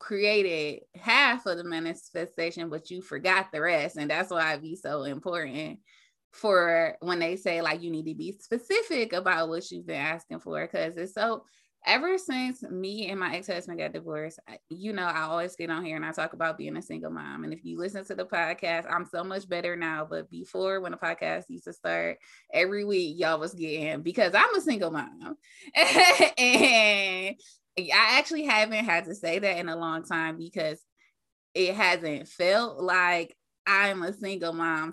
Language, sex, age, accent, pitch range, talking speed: English, female, 20-39, American, 160-195 Hz, 190 wpm